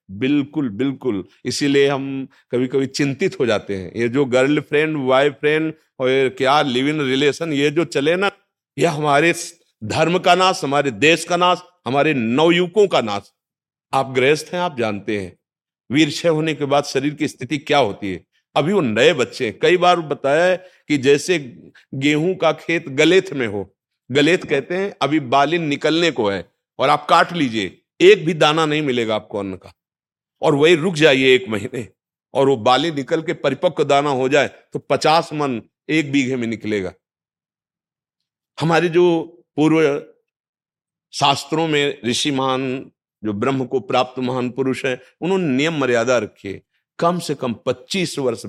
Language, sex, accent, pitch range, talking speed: Hindi, male, native, 125-160 Hz, 160 wpm